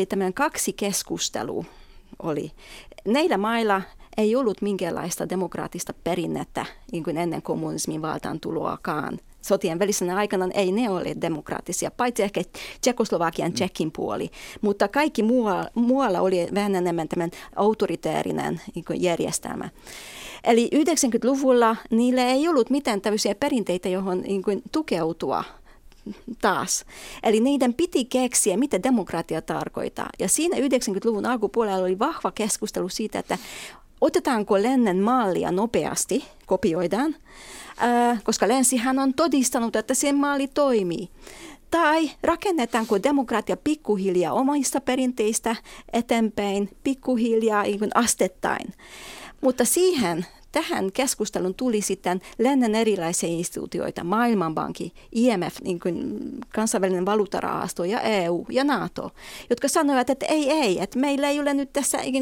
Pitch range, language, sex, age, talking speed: 195-265 Hz, Finnish, female, 30-49, 115 wpm